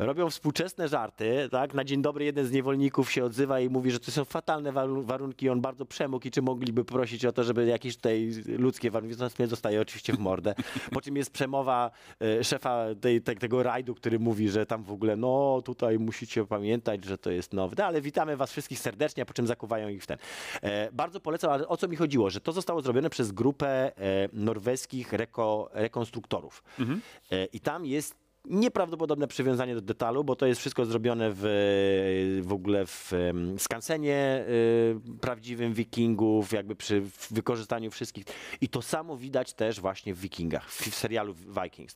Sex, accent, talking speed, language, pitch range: male, native, 180 wpm, Polish, 110-135 Hz